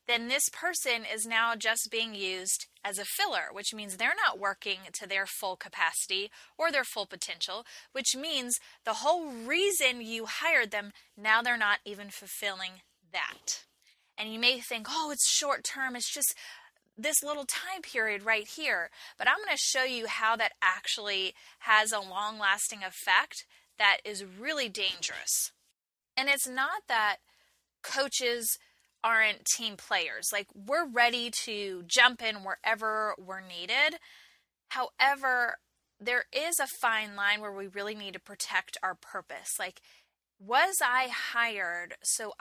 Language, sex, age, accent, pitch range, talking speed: English, female, 20-39, American, 205-260 Hz, 150 wpm